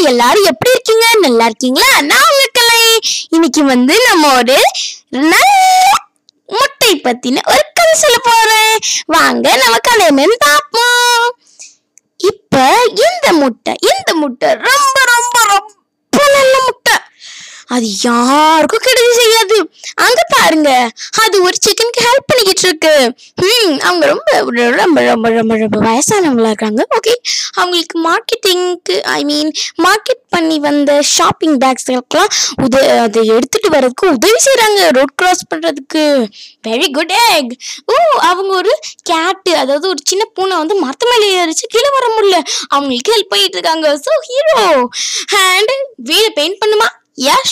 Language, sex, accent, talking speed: Tamil, female, native, 75 wpm